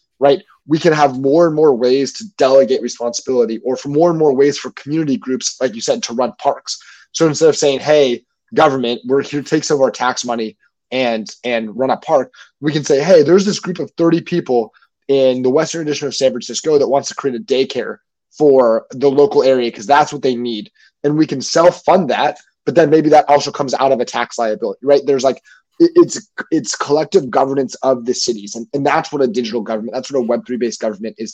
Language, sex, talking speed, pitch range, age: English, male, 230 wpm, 120-150 Hz, 20-39